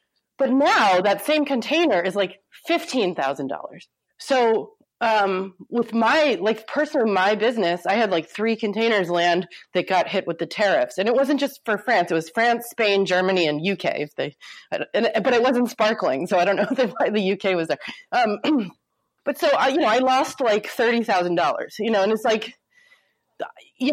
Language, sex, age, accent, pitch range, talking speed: English, female, 30-49, American, 200-295 Hz, 190 wpm